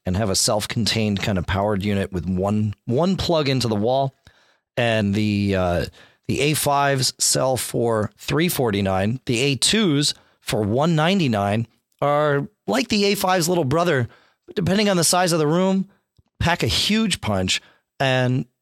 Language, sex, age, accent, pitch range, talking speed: English, male, 40-59, American, 110-160 Hz, 150 wpm